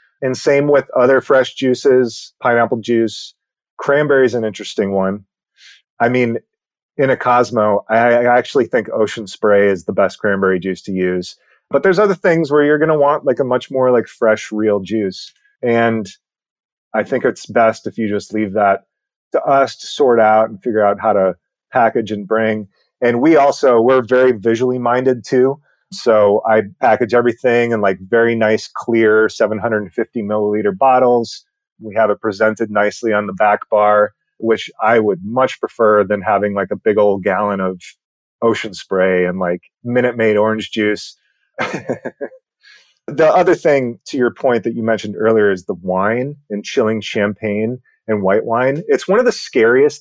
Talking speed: 175 wpm